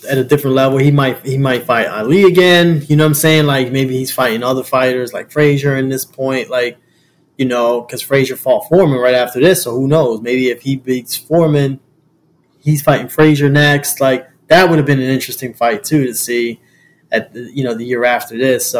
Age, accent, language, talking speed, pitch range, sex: 20-39, American, English, 220 wpm, 125-155 Hz, male